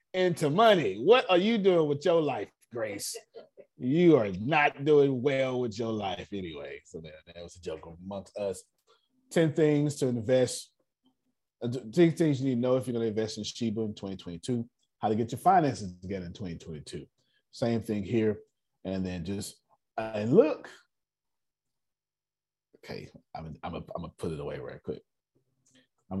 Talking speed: 170 wpm